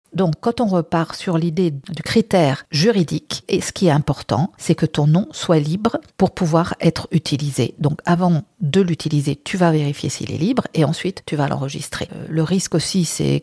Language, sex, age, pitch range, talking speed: French, female, 50-69, 150-185 Hz, 190 wpm